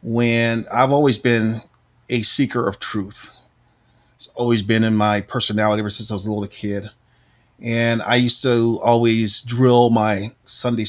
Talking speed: 160 wpm